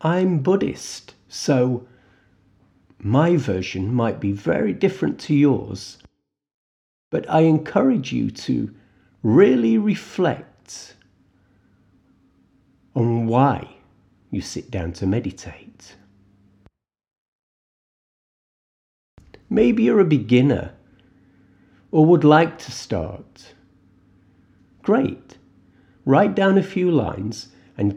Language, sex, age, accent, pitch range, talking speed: English, male, 50-69, British, 95-140 Hz, 90 wpm